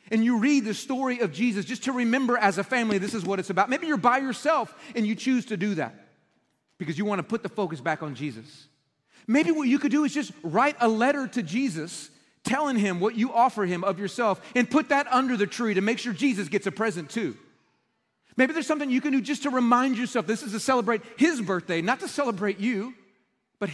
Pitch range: 170-235 Hz